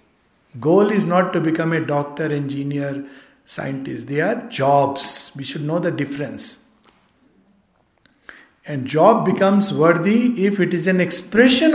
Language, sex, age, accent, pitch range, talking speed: Hindi, male, 60-79, native, 150-210 Hz, 135 wpm